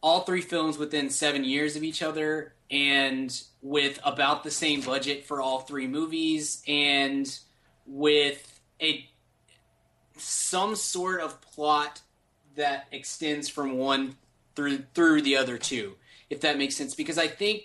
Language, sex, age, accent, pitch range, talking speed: English, male, 20-39, American, 140-160 Hz, 145 wpm